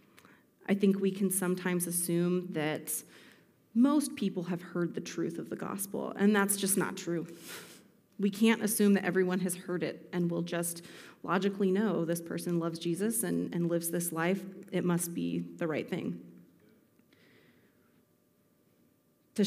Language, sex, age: English, female, 30-49